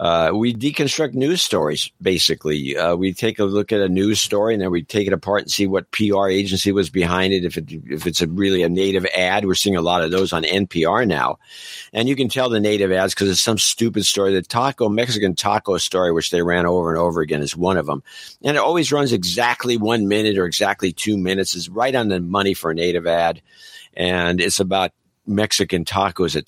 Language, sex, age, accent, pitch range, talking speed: English, male, 50-69, American, 85-105 Hz, 230 wpm